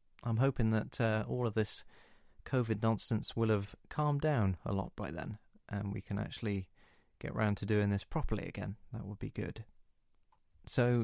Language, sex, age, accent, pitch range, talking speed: English, male, 30-49, British, 100-115 Hz, 180 wpm